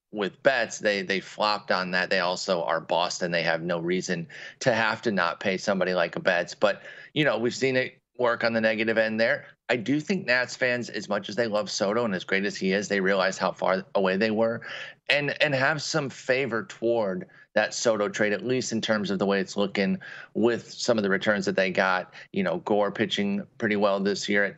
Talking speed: 230 wpm